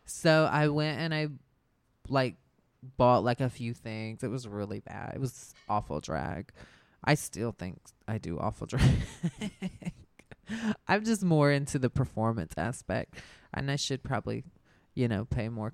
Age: 20-39